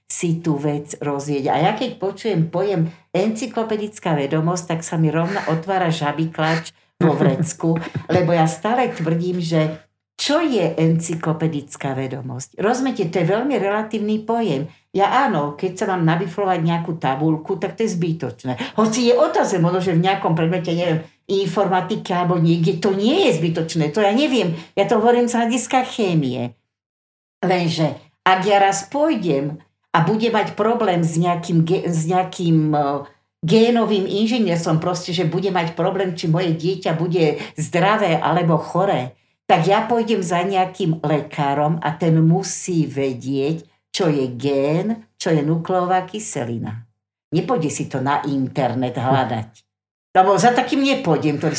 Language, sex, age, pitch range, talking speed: Slovak, female, 60-79, 150-200 Hz, 145 wpm